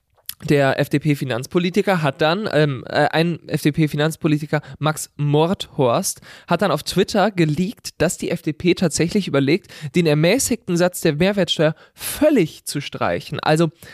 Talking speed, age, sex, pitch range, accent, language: 120 wpm, 20-39, male, 145-180 Hz, German, German